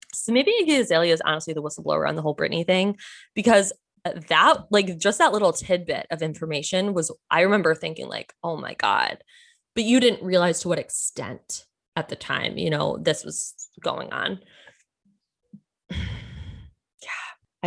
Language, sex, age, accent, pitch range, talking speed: English, female, 20-39, American, 155-185 Hz, 155 wpm